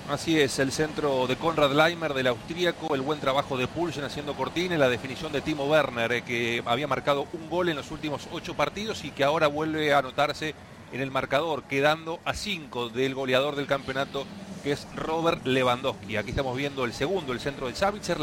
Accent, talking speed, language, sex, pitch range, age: Argentinian, 200 wpm, Spanish, male, 130-160 Hz, 40-59